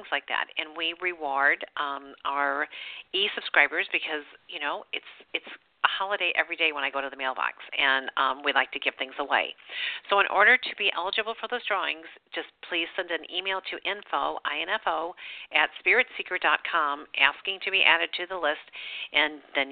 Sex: female